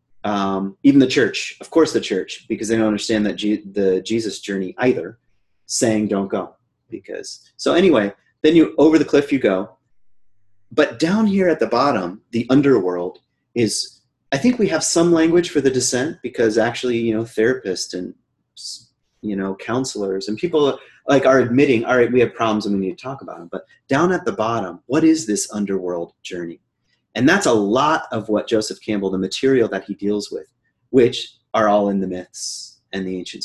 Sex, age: male, 30-49